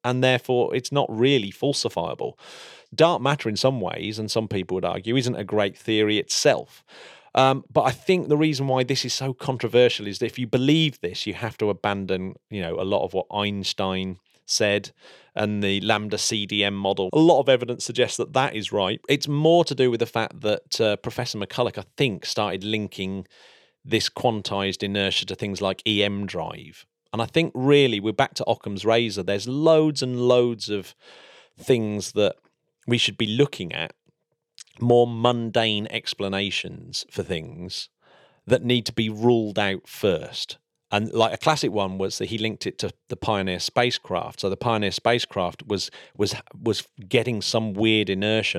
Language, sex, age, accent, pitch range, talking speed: English, male, 30-49, British, 100-130 Hz, 180 wpm